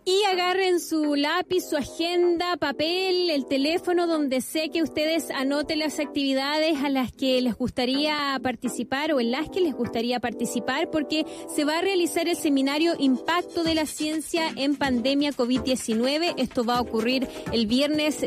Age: 20-39